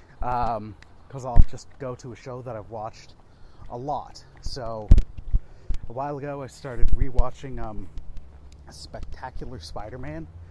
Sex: male